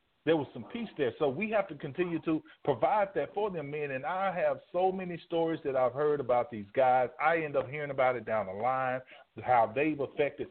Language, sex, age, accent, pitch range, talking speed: English, male, 40-59, American, 125-185 Hz, 230 wpm